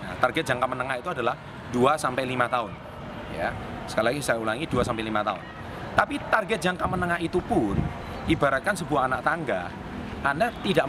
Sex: male